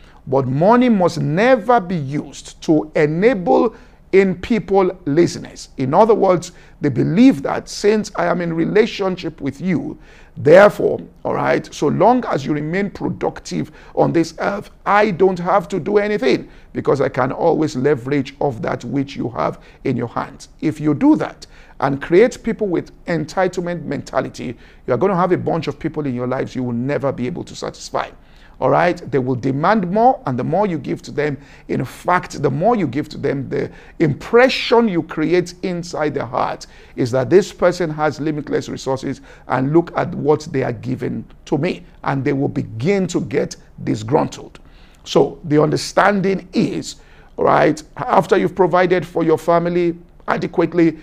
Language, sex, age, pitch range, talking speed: English, male, 50-69, 145-190 Hz, 175 wpm